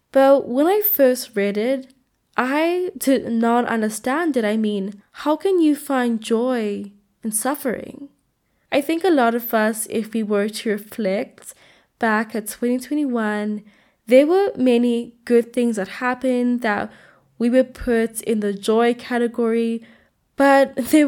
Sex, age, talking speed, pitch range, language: female, 10-29, 145 wpm, 220-265 Hz, English